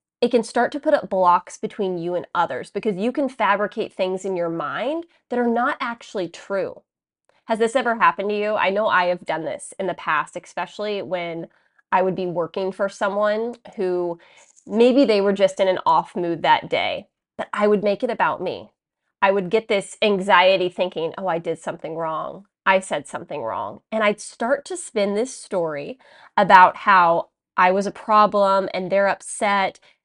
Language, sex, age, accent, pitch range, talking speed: English, female, 20-39, American, 185-230 Hz, 190 wpm